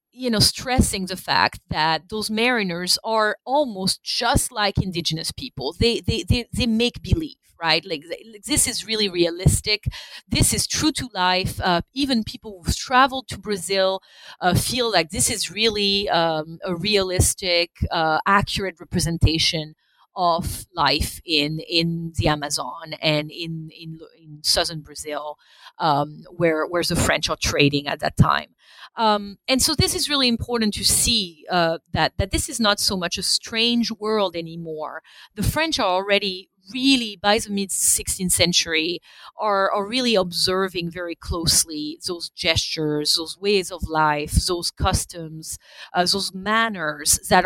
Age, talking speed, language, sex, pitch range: 30-49, 155 wpm, English, female, 165-210 Hz